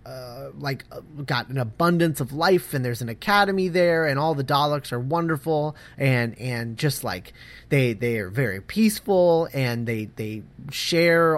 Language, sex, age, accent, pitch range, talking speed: English, male, 30-49, American, 125-185 Hz, 170 wpm